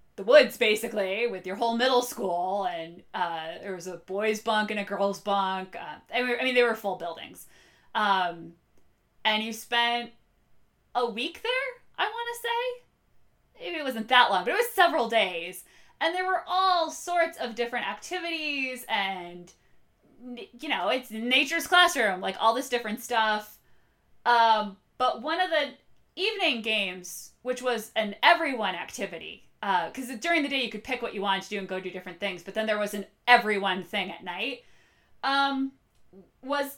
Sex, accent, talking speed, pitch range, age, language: female, American, 175 wpm, 210-280 Hz, 20-39, English